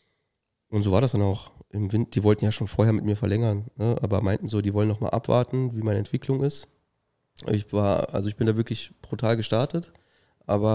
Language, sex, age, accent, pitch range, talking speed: German, male, 20-39, German, 105-120 Hz, 220 wpm